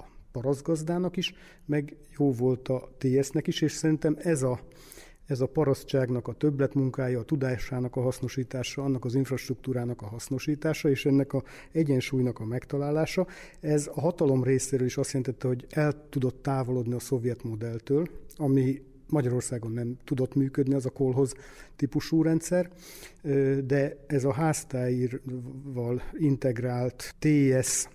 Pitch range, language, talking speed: 125-145 Hz, Hungarian, 135 wpm